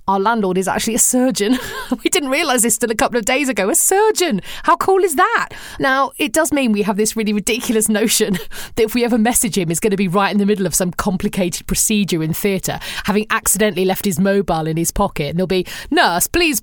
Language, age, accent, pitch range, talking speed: English, 40-59, British, 185-240 Hz, 235 wpm